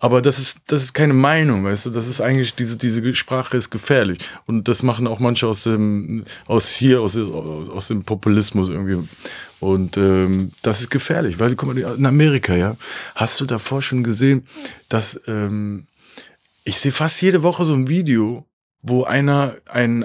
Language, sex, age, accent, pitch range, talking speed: German, male, 30-49, German, 110-135 Hz, 185 wpm